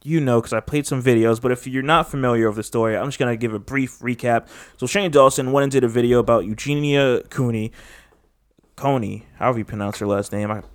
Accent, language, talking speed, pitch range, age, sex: American, English, 235 wpm, 110-140 Hz, 20-39, male